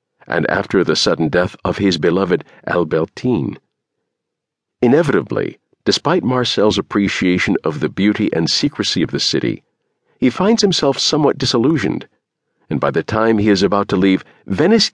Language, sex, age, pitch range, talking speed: English, male, 50-69, 95-130 Hz, 145 wpm